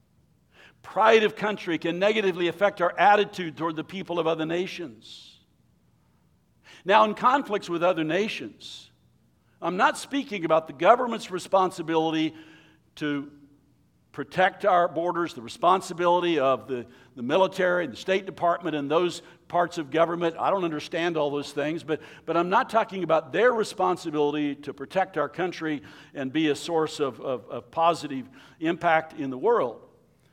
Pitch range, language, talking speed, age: 155-205 Hz, English, 150 wpm, 60-79